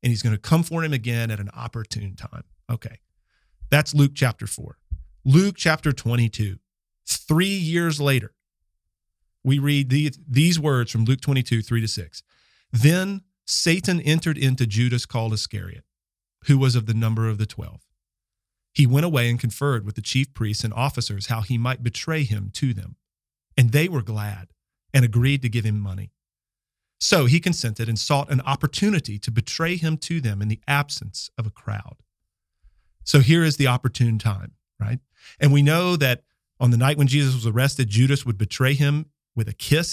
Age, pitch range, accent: 40-59, 110-145 Hz, American